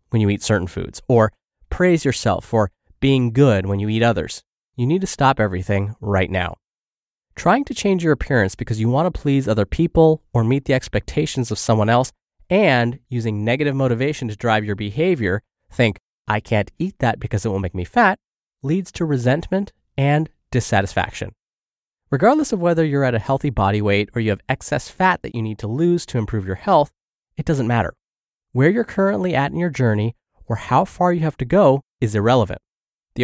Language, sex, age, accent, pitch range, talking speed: English, male, 20-39, American, 110-160 Hz, 195 wpm